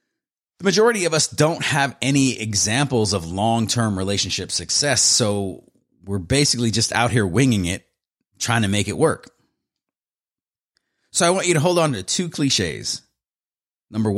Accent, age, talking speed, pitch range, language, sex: American, 30-49, 150 wpm, 100-135 Hz, English, male